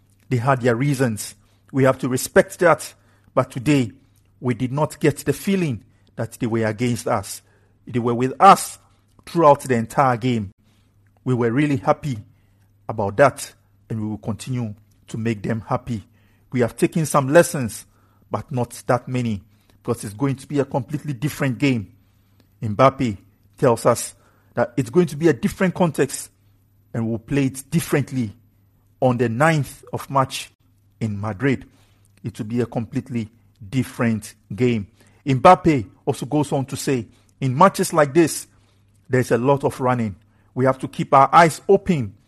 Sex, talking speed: male, 160 wpm